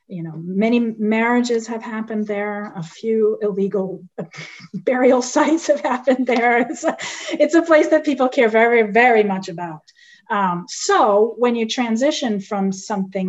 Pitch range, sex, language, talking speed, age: 180-225 Hz, female, English, 150 wpm, 30-49